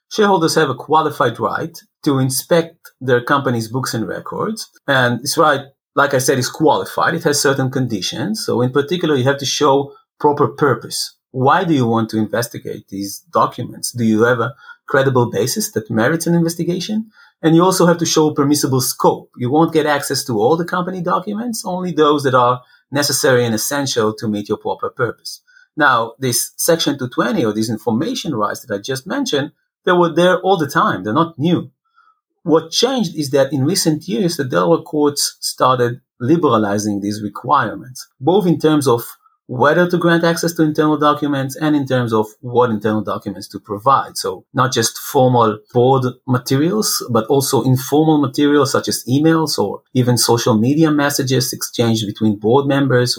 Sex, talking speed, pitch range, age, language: male, 175 wpm, 120-165 Hz, 30-49, English